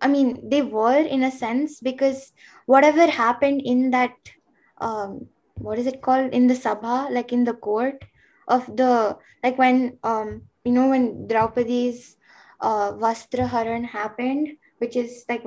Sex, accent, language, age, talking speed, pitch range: female, Indian, English, 10-29, 155 wpm, 235-275 Hz